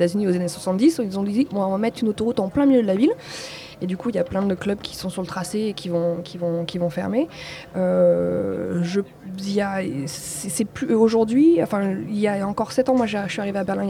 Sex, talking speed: female, 215 wpm